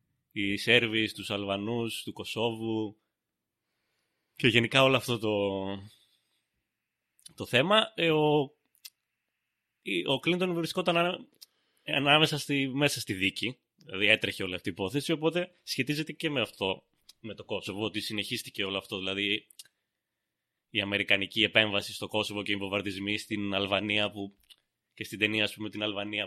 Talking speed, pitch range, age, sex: 130 wpm, 100-135 Hz, 30-49, male